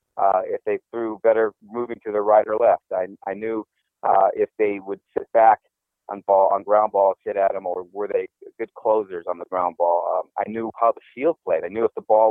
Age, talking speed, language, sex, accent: 30-49, 240 wpm, English, male, American